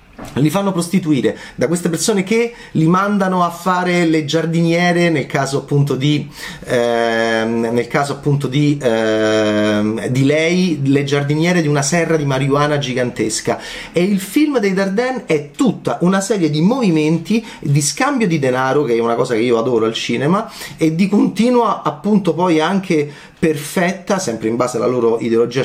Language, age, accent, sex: Italian, 30-49, native, male